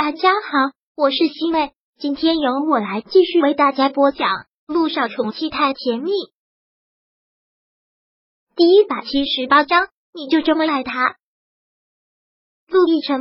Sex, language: male, Chinese